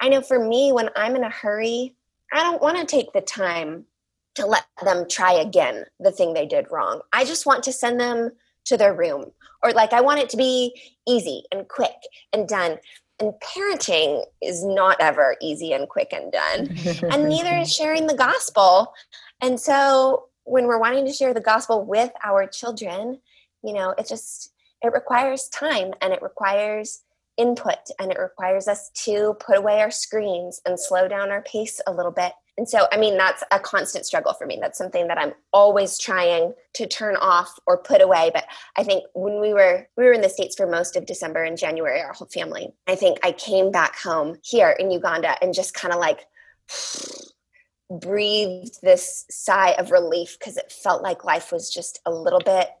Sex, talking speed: female, 200 wpm